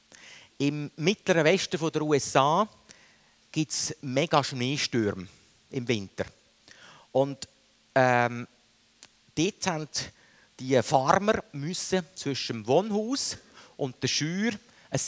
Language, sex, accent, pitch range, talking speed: German, male, Austrian, 120-155 Hz, 100 wpm